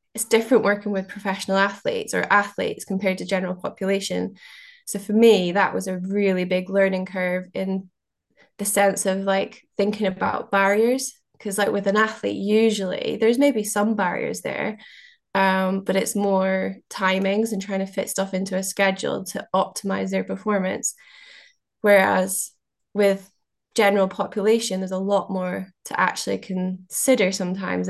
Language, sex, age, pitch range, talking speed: English, female, 20-39, 185-205 Hz, 150 wpm